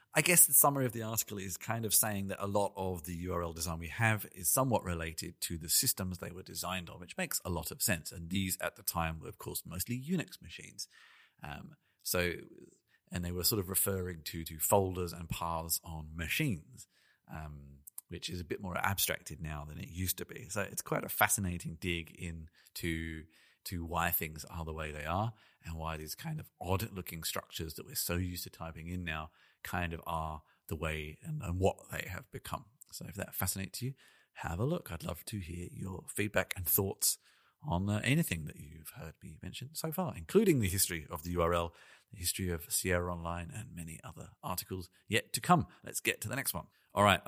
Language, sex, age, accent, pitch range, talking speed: English, male, 40-59, British, 85-105 Hz, 215 wpm